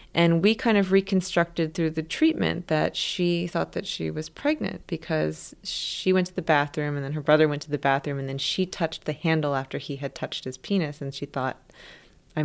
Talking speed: 215 wpm